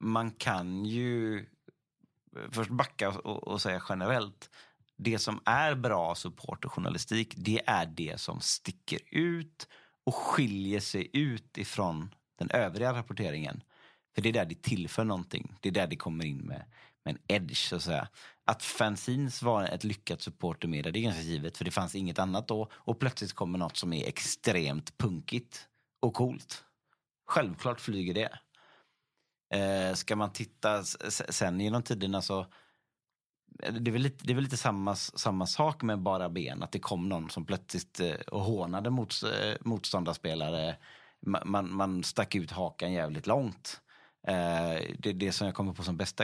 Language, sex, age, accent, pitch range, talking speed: Swedish, male, 30-49, native, 90-115 Hz, 165 wpm